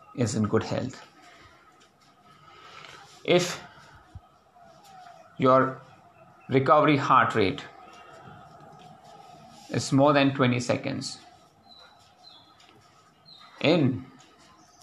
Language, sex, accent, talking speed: English, male, Indian, 60 wpm